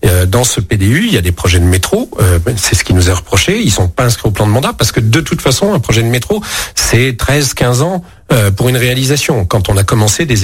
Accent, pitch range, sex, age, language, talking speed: French, 105-135 Hz, male, 40-59, French, 260 wpm